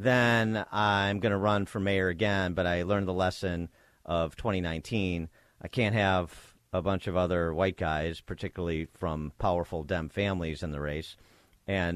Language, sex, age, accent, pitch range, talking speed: English, male, 40-59, American, 85-105 Hz, 165 wpm